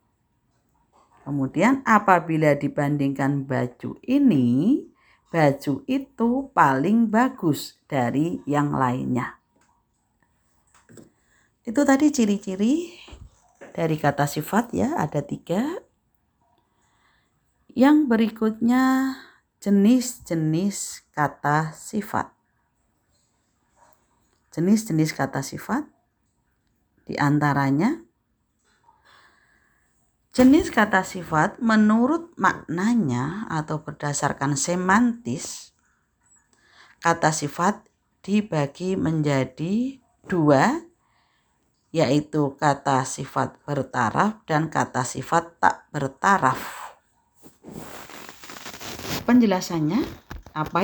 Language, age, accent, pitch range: Indonesian, 40-59, native, 145-230 Hz